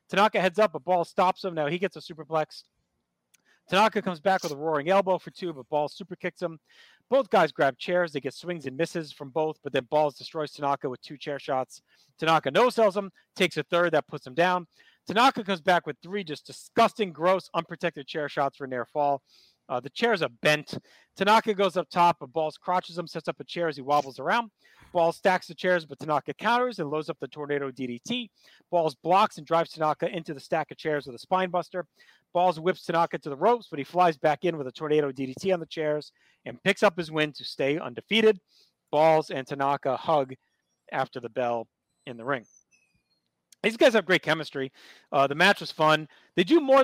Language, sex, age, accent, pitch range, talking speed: English, male, 40-59, American, 135-180 Hz, 215 wpm